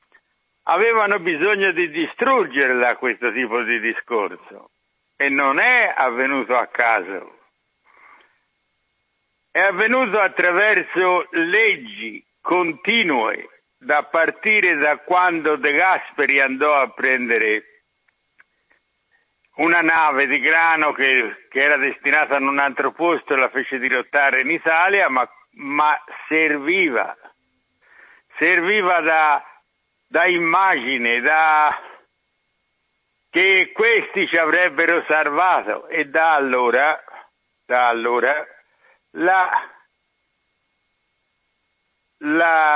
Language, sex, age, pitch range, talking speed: Italian, male, 60-79, 140-185 Hz, 95 wpm